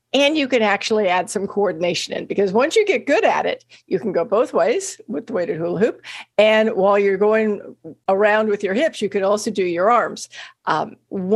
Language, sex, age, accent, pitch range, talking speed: English, female, 50-69, American, 190-235 Hz, 210 wpm